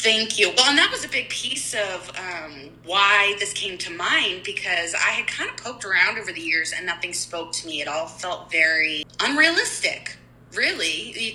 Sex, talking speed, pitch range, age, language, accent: female, 200 wpm, 155-185 Hz, 20-39, English, American